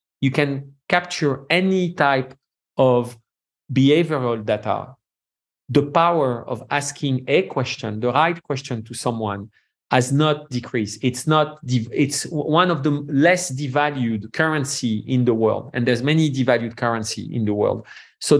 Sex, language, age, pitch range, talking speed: male, English, 40-59, 125-150 Hz, 135 wpm